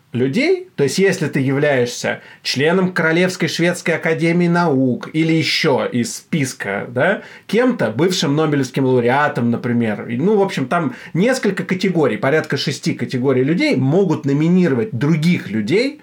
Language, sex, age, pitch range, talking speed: Russian, male, 30-49, 130-185 Hz, 130 wpm